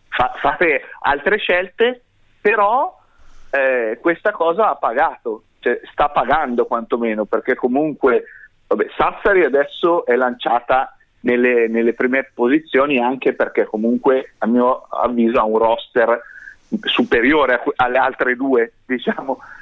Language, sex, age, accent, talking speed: Italian, male, 40-59, native, 115 wpm